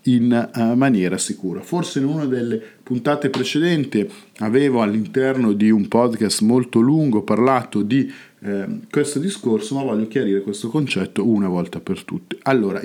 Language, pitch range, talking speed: Italian, 110-145 Hz, 140 wpm